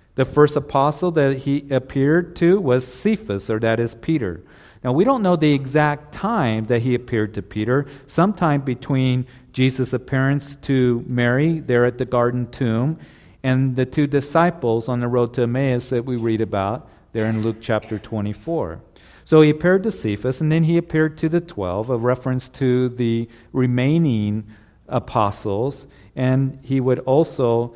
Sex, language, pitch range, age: male, English, 115-150 Hz, 50-69